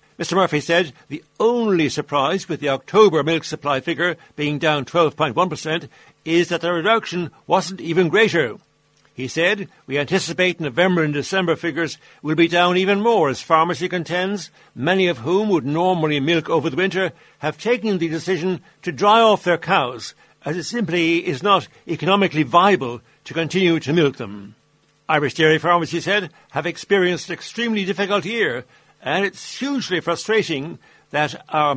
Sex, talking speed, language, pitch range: male, 160 wpm, English, 150-185 Hz